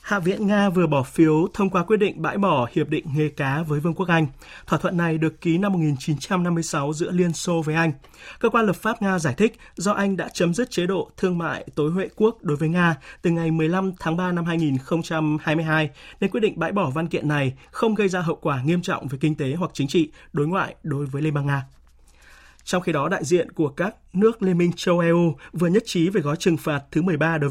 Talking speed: 240 wpm